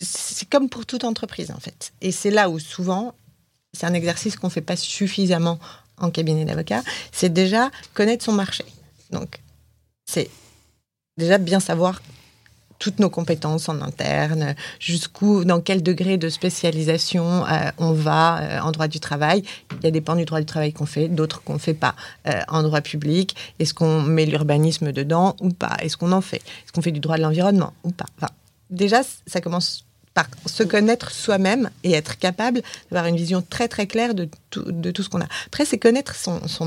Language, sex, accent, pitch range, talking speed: French, female, French, 160-195 Hz, 200 wpm